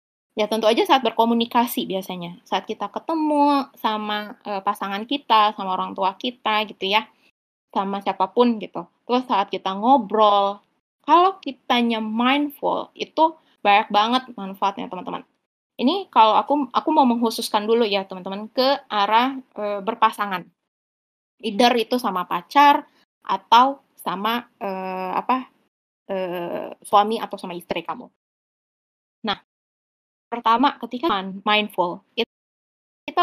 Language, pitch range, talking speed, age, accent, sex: Indonesian, 205-275 Hz, 120 wpm, 20-39, native, female